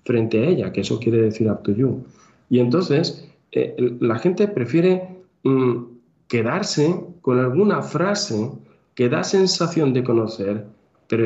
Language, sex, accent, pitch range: Spanish, male, Spanish, 105-130 Hz